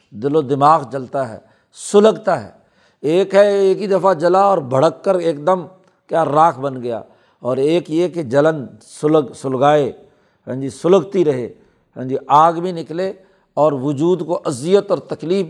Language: Urdu